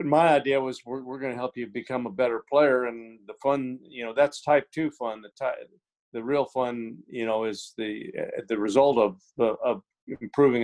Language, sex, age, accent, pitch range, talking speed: English, male, 50-69, American, 110-135 Hz, 210 wpm